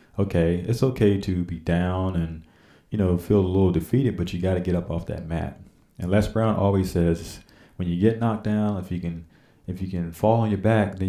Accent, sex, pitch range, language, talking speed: American, male, 85-105 Hz, English, 235 wpm